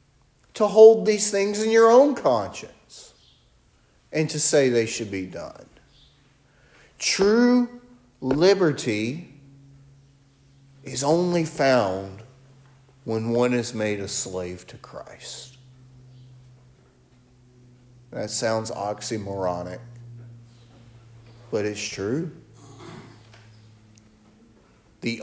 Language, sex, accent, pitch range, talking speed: English, male, American, 100-125 Hz, 85 wpm